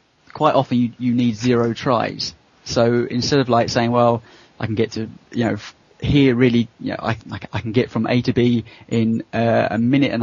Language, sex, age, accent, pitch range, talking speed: English, male, 30-49, British, 115-130 Hz, 210 wpm